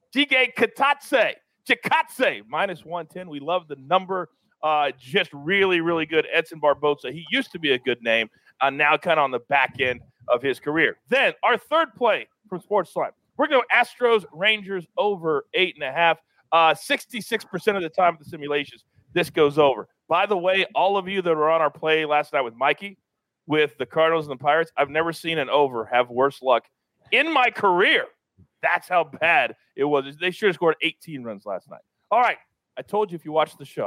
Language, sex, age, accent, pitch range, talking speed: English, male, 40-59, American, 155-215 Hz, 200 wpm